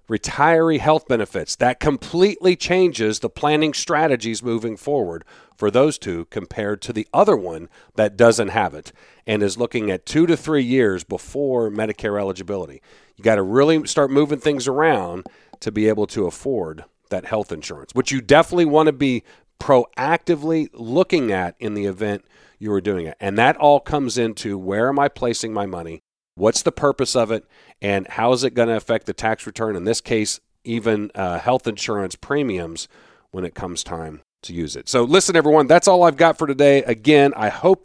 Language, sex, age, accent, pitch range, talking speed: English, male, 40-59, American, 105-145 Hz, 190 wpm